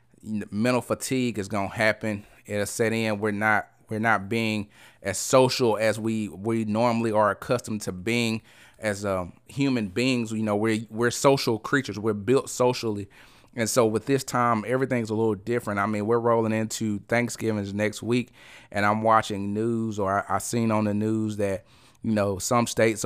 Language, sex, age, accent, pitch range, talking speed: English, male, 30-49, American, 105-120 Hz, 180 wpm